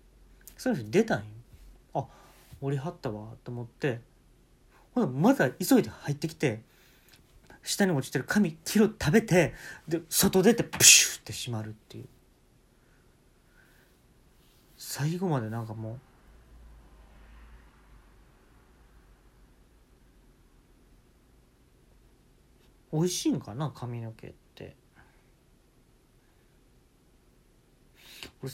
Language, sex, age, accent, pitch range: Japanese, male, 40-59, native, 115-165 Hz